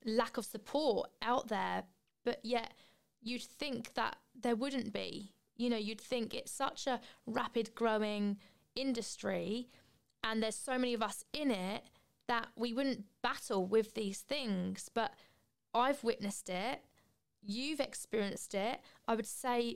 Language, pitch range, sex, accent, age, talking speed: English, 210-240 Hz, female, British, 20-39, 145 wpm